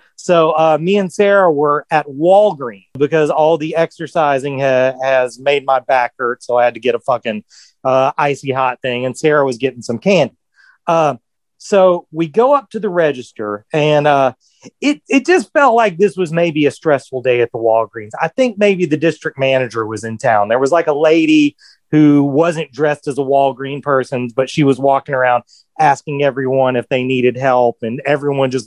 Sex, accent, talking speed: male, American, 195 wpm